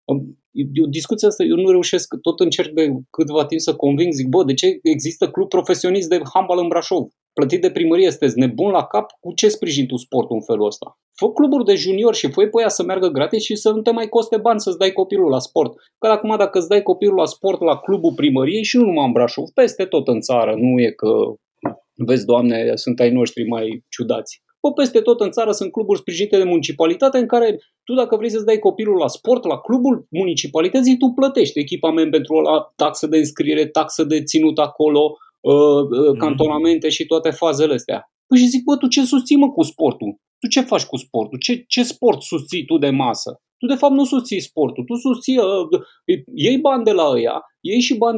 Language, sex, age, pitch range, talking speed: Romanian, male, 30-49, 155-255 Hz, 210 wpm